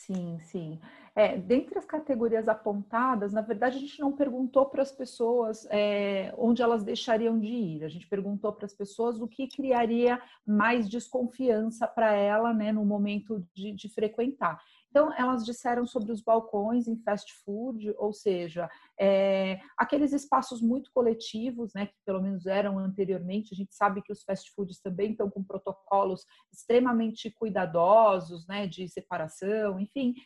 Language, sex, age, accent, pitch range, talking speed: Portuguese, female, 40-59, Brazilian, 195-245 Hz, 155 wpm